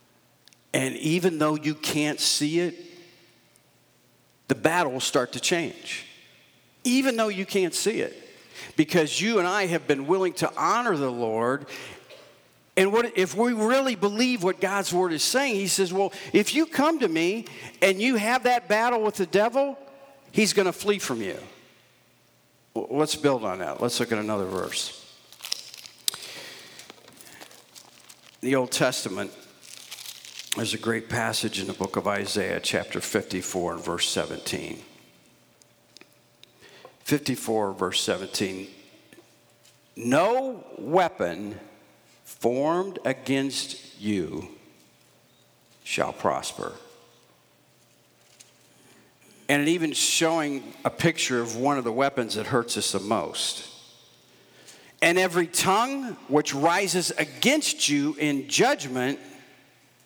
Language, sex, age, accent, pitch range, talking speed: English, male, 50-69, American, 125-200 Hz, 125 wpm